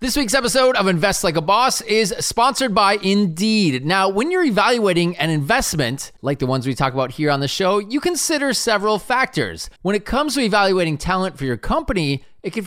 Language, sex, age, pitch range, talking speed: English, male, 30-49, 150-220 Hz, 205 wpm